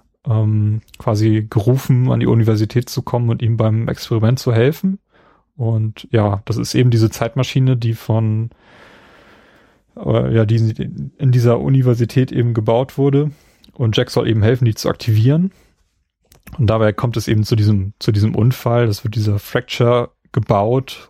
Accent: German